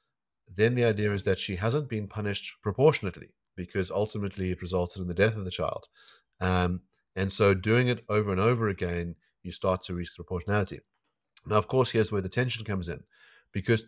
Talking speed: 190 wpm